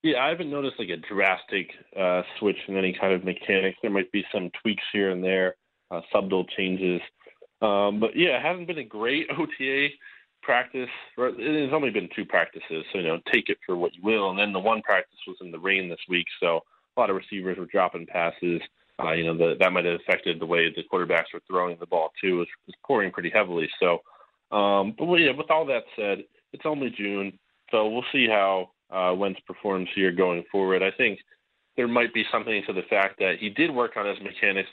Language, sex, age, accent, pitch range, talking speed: English, male, 20-39, American, 90-105 Hz, 220 wpm